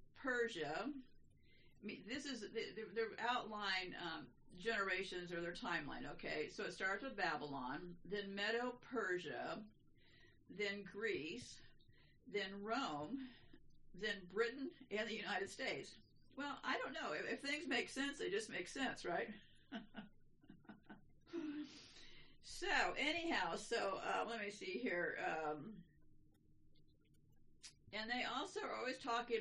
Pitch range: 190-275 Hz